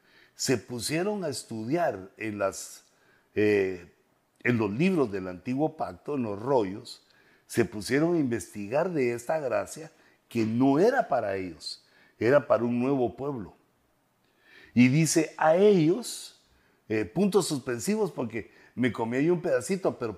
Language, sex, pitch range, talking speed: Spanish, male, 105-150 Hz, 135 wpm